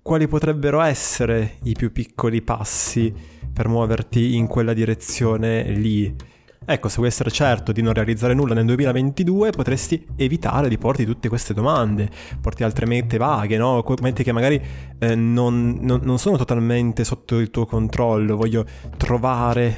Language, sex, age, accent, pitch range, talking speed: Italian, male, 20-39, native, 110-140 Hz, 155 wpm